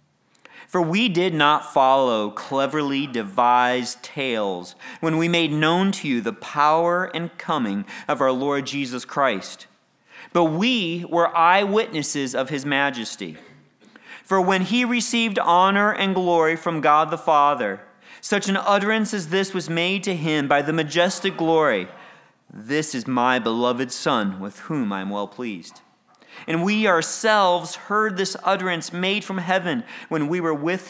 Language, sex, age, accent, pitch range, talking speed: English, male, 40-59, American, 135-180 Hz, 150 wpm